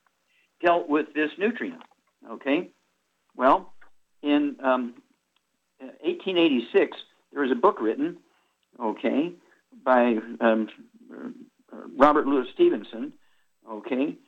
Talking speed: 85 wpm